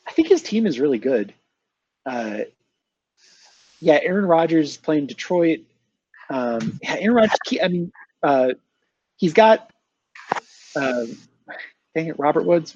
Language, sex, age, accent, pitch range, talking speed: English, male, 30-49, American, 120-160 Hz, 125 wpm